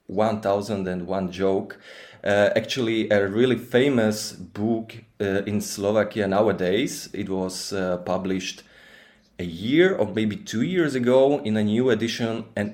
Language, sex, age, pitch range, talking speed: Slovak, male, 20-39, 100-120 Hz, 130 wpm